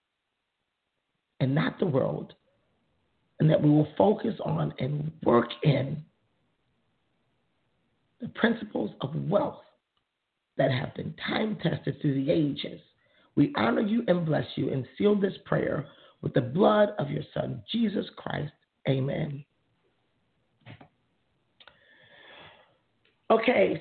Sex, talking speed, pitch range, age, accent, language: male, 110 wpm, 150-230 Hz, 40-59, American, English